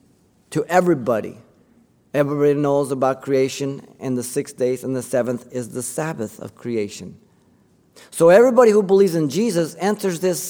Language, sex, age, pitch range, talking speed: English, male, 50-69, 135-210 Hz, 150 wpm